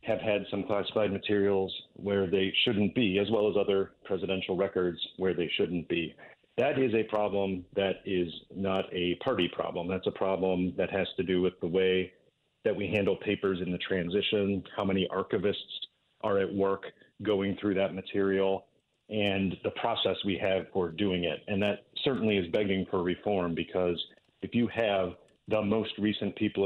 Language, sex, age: English, male, 40-59